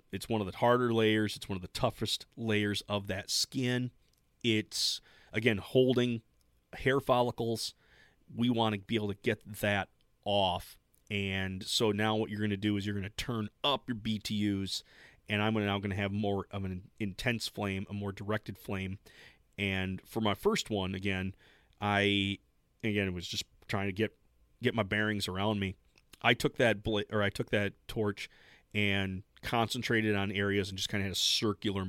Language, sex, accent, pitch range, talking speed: English, male, American, 100-115 Hz, 185 wpm